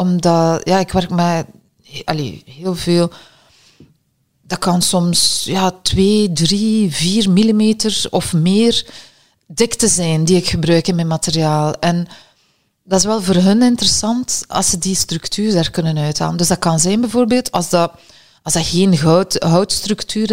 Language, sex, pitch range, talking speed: Dutch, female, 175-220 Hz, 140 wpm